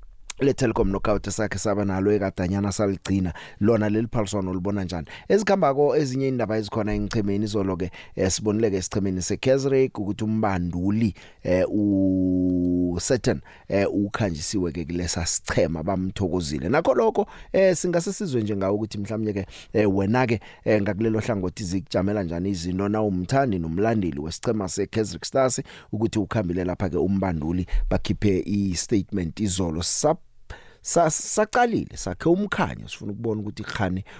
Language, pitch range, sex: English, 90-110 Hz, male